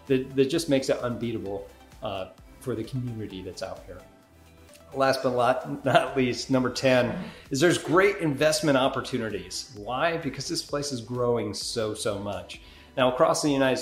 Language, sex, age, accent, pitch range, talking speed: English, male, 40-59, American, 105-135 Hz, 160 wpm